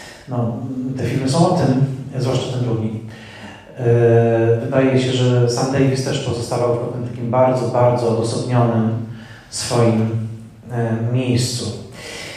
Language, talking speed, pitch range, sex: Polish, 115 wpm, 115-135 Hz, male